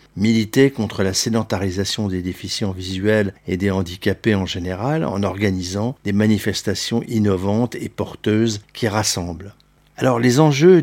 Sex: male